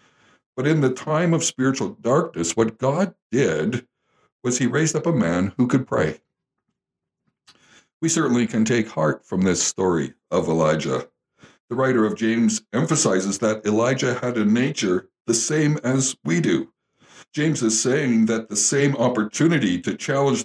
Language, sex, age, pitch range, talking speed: English, male, 60-79, 105-135 Hz, 155 wpm